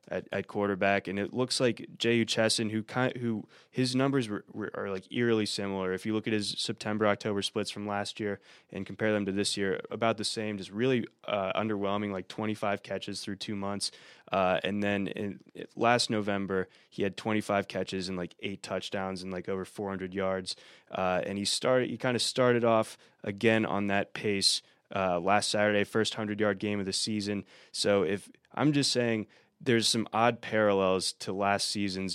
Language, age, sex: English, 20-39, male